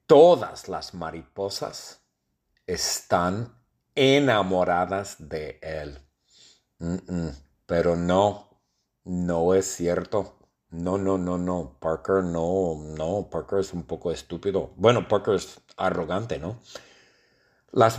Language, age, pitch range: English, 50-69, 80-110 Hz